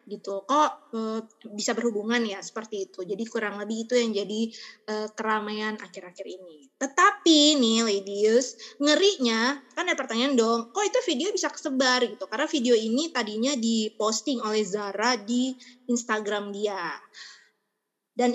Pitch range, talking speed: 215-280 Hz, 140 wpm